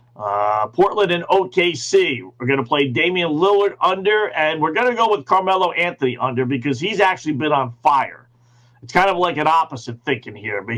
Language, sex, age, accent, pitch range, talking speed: English, male, 50-69, American, 125-175 Hz, 195 wpm